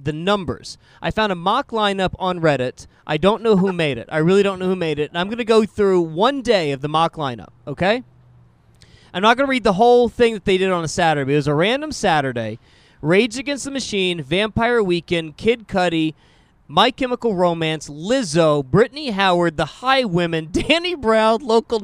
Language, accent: English, American